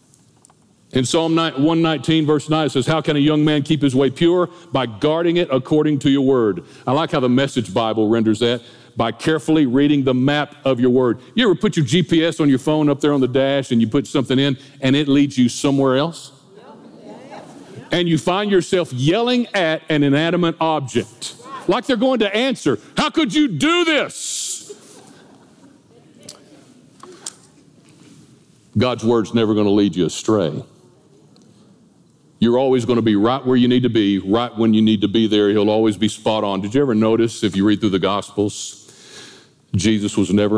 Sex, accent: male, American